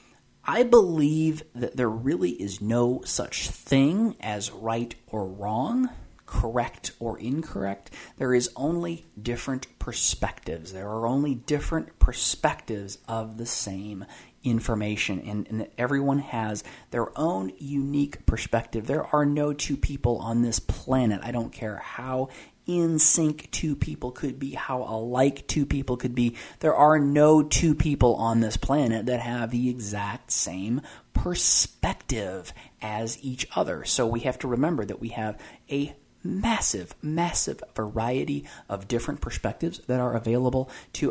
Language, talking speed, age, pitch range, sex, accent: English, 145 wpm, 30-49, 110-140 Hz, male, American